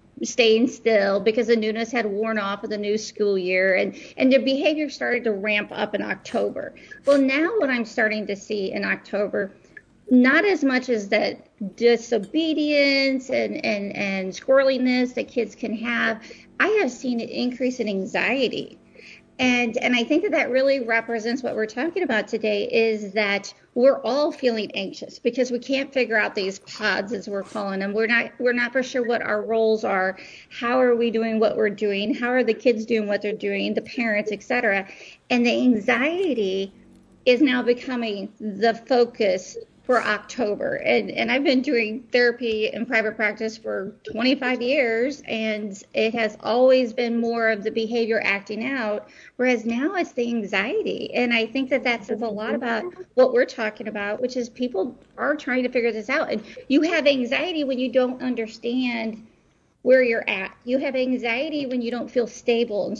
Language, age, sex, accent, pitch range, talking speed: English, 40-59, female, American, 215-260 Hz, 180 wpm